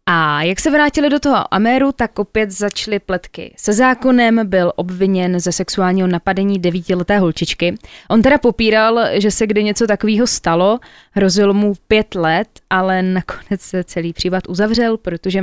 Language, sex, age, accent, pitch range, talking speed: Czech, female, 20-39, native, 180-220 Hz, 155 wpm